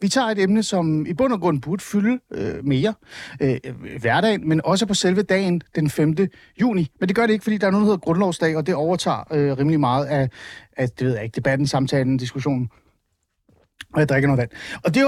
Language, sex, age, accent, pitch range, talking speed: Danish, male, 30-49, native, 150-220 Hz, 215 wpm